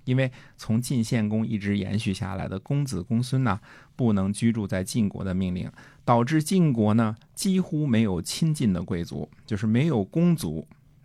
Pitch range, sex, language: 95-130 Hz, male, Chinese